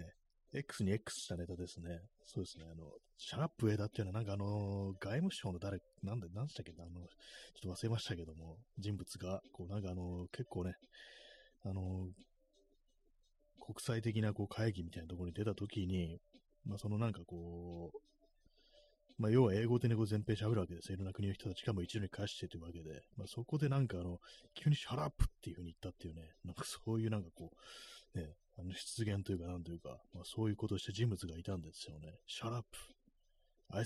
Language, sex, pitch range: Japanese, male, 90-115 Hz